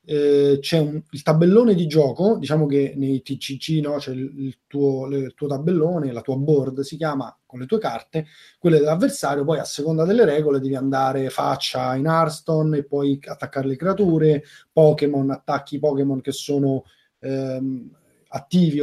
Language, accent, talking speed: Italian, native, 160 wpm